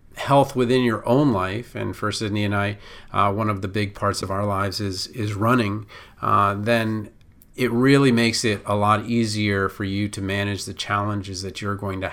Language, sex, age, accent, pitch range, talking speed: English, male, 40-59, American, 105-120 Hz, 205 wpm